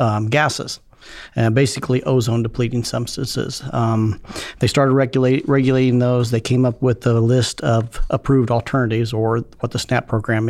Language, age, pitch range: English, 40-59, 115-130 Hz